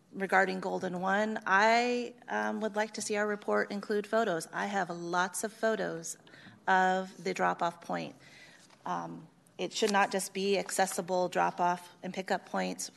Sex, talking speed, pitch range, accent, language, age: female, 155 wpm, 170-200 Hz, American, English, 30-49